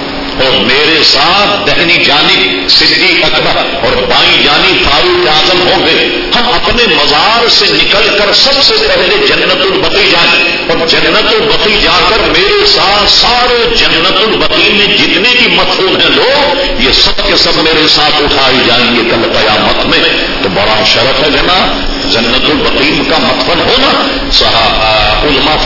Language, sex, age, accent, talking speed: English, male, 50-69, Indian, 130 wpm